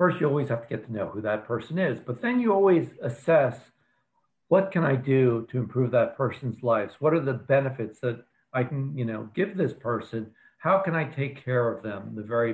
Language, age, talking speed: English, 60-79, 225 wpm